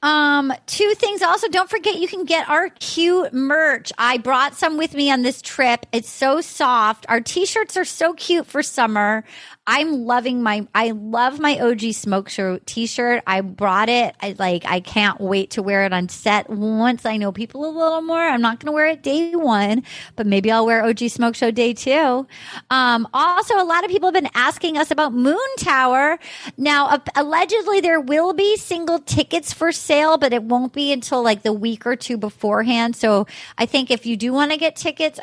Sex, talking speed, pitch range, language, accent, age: female, 210 wpm, 225-305 Hz, English, American, 30-49